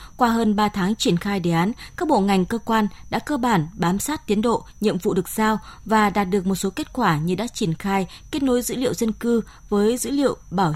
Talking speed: 250 wpm